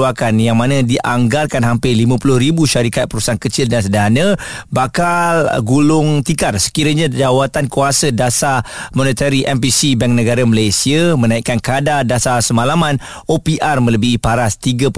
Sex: male